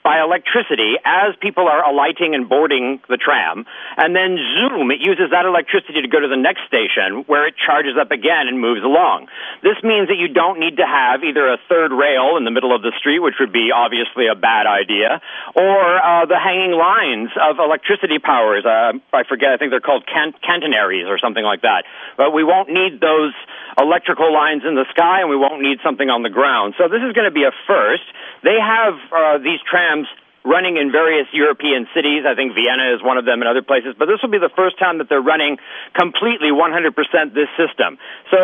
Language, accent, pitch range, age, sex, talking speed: English, American, 140-185 Hz, 50-69, male, 215 wpm